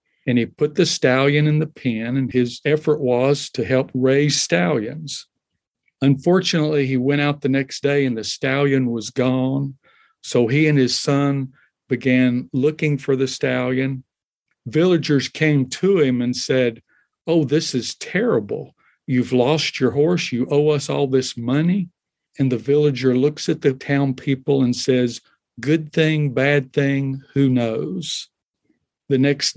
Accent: American